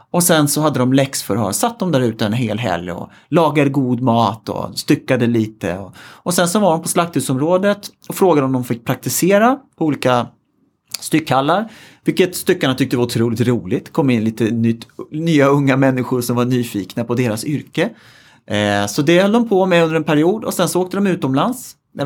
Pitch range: 120-160 Hz